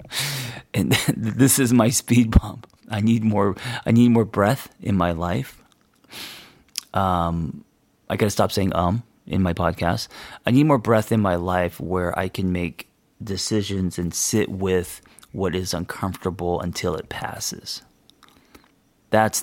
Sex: male